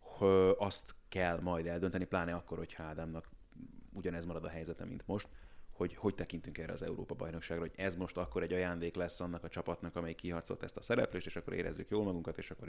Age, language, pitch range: 30-49, Hungarian, 85-100 Hz